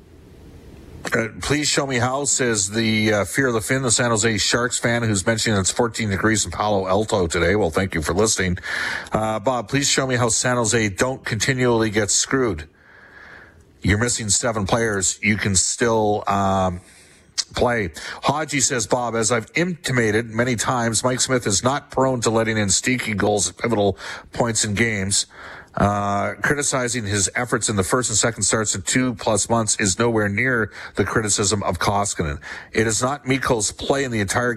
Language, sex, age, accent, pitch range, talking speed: English, male, 50-69, American, 100-120 Hz, 180 wpm